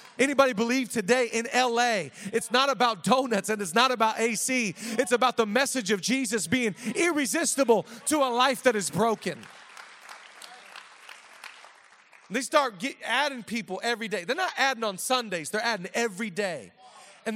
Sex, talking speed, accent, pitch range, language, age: male, 150 wpm, American, 180-245 Hz, English, 40-59